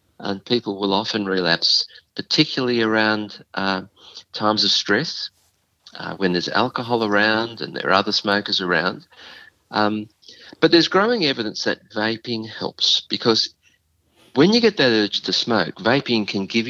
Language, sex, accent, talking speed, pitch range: English, male, Australian, 145 wpm, 95-120 Hz